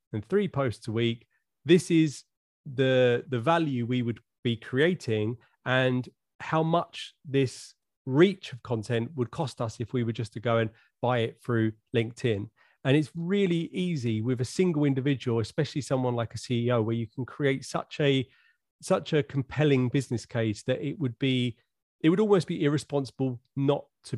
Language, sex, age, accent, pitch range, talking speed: English, male, 30-49, British, 115-145 Hz, 170 wpm